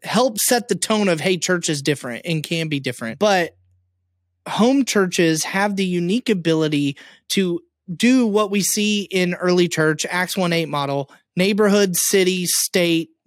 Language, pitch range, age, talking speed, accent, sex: English, 165-210 Hz, 30-49, 155 wpm, American, male